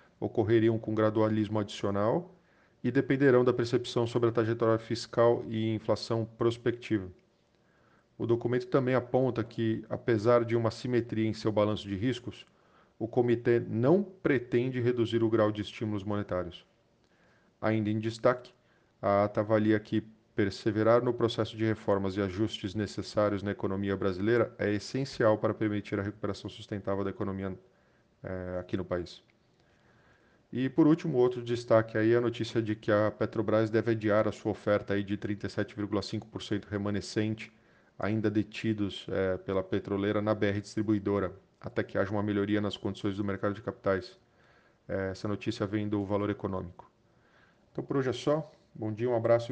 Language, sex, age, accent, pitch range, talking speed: Portuguese, male, 40-59, Brazilian, 105-115 Hz, 155 wpm